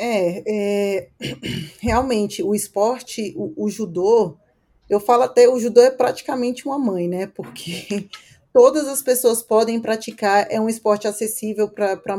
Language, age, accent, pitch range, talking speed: Portuguese, 20-39, Brazilian, 205-245 Hz, 145 wpm